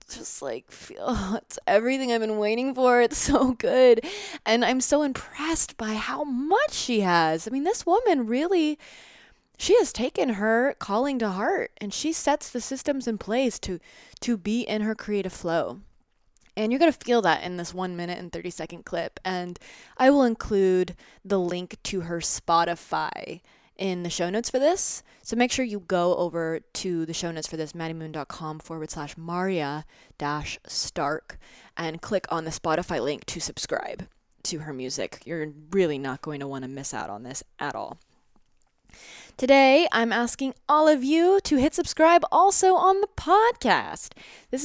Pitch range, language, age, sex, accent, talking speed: 170-265 Hz, English, 20-39, female, American, 175 wpm